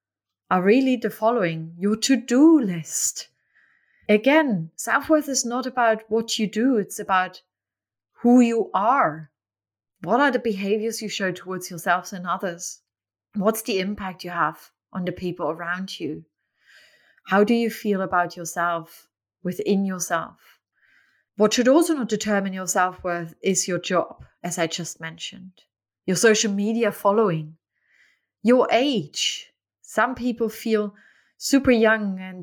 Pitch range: 180-230 Hz